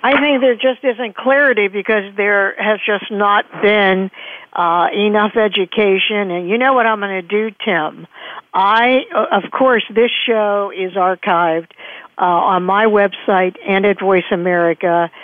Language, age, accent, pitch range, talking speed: English, 50-69, American, 185-225 Hz, 155 wpm